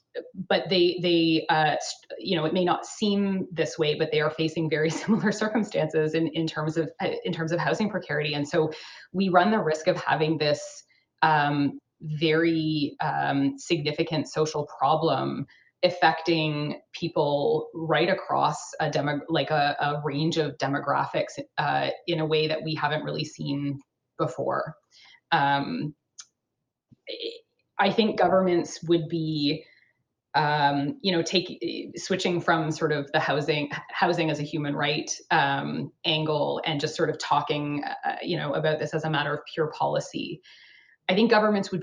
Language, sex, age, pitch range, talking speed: English, female, 20-39, 150-175 Hz, 155 wpm